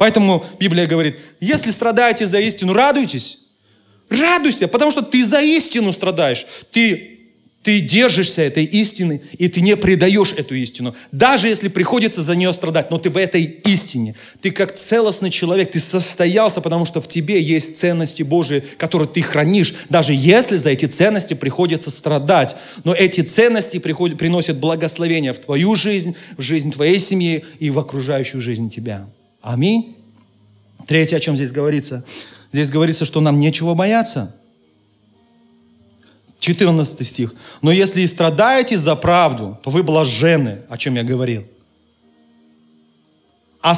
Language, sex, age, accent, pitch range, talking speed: Russian, male, 30-49, native, 135-195 Hz, 145 wpm